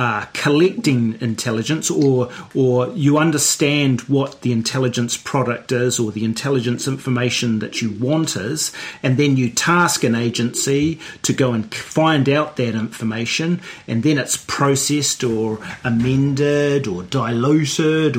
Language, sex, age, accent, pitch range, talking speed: English, male, 40-59, Australian, 115-150 Hz, 135 wpm